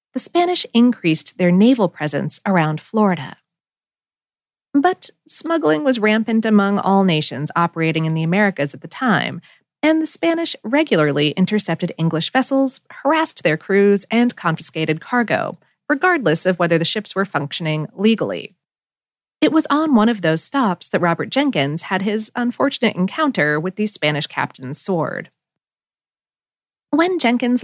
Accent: American